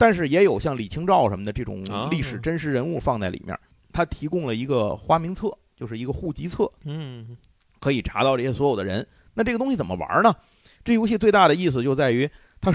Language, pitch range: Chinese, 120-175 Hz